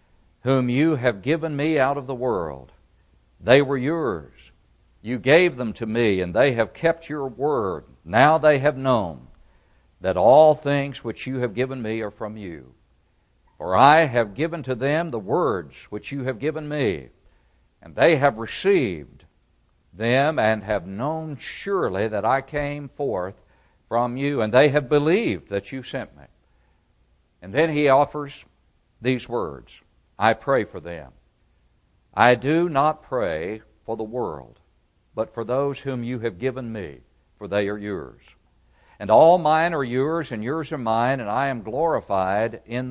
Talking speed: 165 wpm